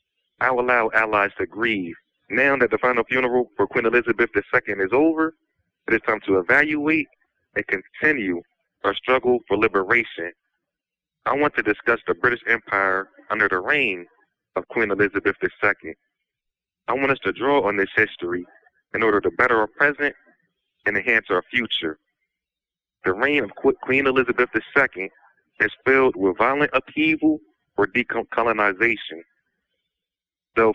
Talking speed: 145 wpm